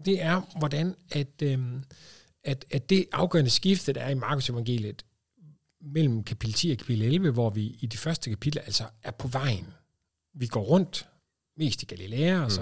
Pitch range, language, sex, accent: 110-150 Hz, Danish, male, native